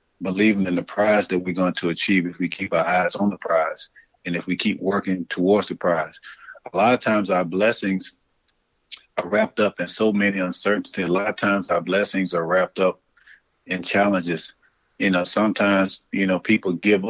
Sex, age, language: male, 30-49, English